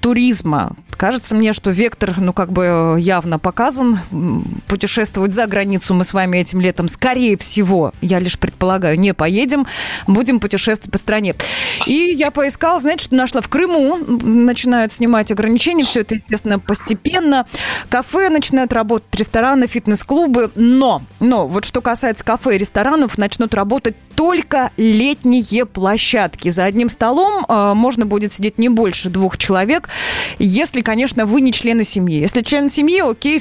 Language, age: Russian, 20-39